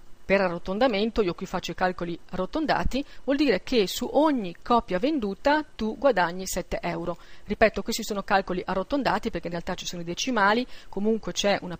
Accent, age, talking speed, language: native, 40-59, 175 wpm, Italian